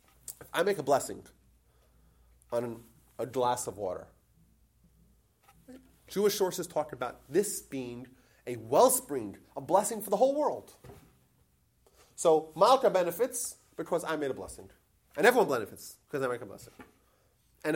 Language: English